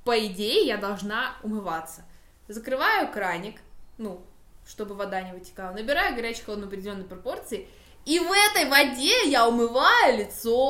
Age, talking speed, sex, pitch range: 20-39, 140 wpm, female, 195-250 Hz